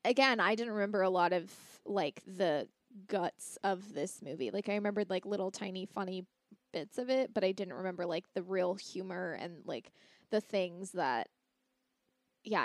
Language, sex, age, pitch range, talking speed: English, female, 20-39, 195-250 Hz, 175 wpm